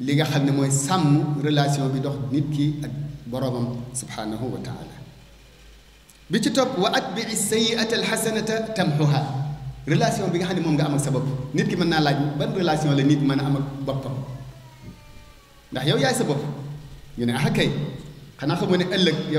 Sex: male